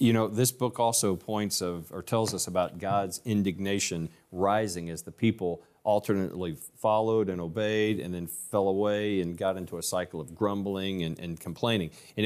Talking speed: 175 wpm